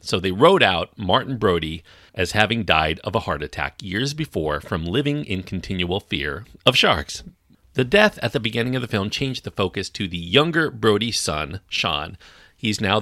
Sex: male